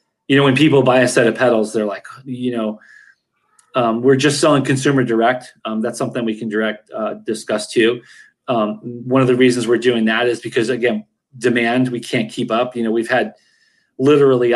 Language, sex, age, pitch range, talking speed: English, male, 30-49, 120-140 Hz, 200 wpm